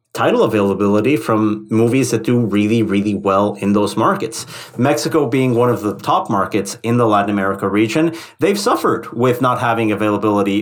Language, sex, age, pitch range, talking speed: English, male, 30-49, 110-150 Hz, 170 wpm